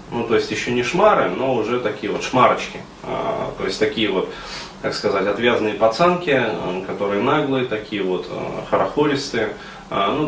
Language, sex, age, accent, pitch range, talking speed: Russian, male, 20-39, native, 100-130 Hz, 160 wpm